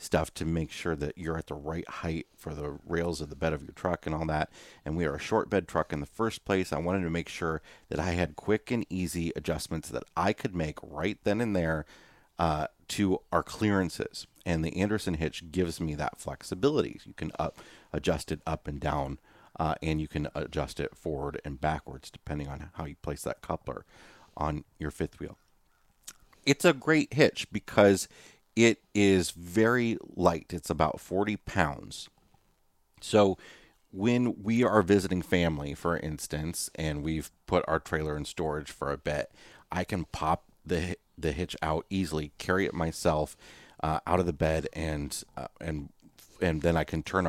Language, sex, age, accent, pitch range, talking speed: English, male, 40-59, American, 75-95 Hz, 190 wpm